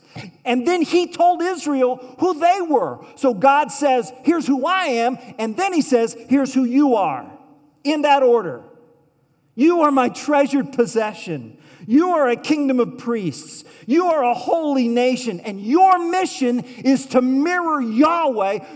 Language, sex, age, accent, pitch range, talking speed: English, male, 50-69, American, 185-280 Hz, 155 wpm